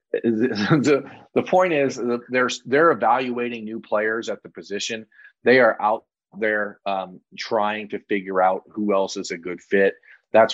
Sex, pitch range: male, 95-105 Hz